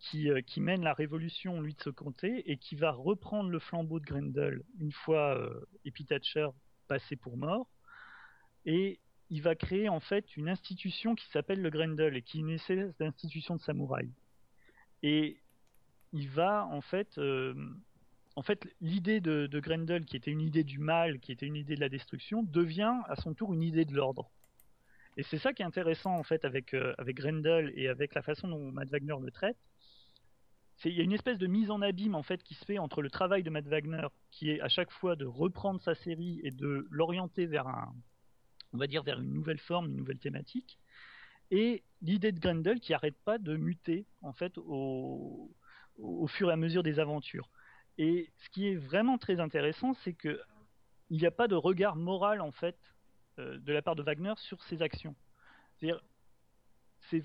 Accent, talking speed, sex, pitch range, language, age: French, 195 wpm, male, 145-185 Hz, French, 40-59